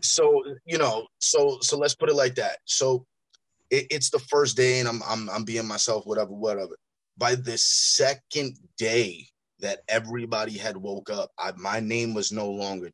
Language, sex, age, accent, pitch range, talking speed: English, male, 20-39, American, 120-190 Hz, 175 wpm